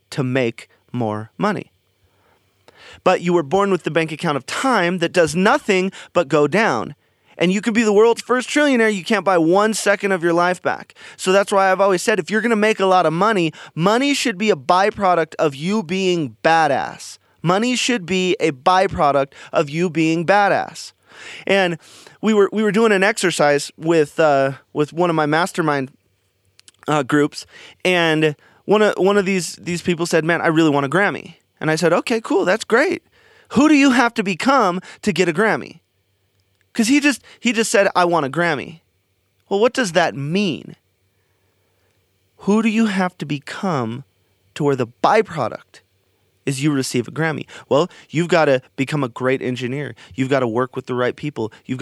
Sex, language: male, English